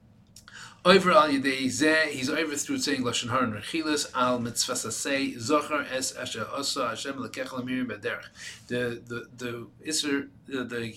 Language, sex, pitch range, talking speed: English, male, 125-165 Hz, 160 wpm